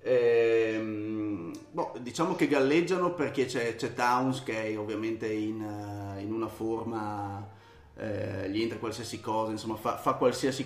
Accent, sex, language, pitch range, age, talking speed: native, male, Italian, 115-135 Hz, 30-49, 145 wpm